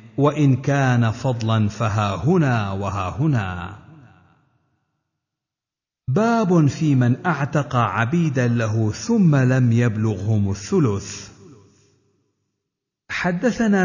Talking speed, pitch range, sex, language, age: 80 wpm, 110-165 Hz, male, Arabic, 50-69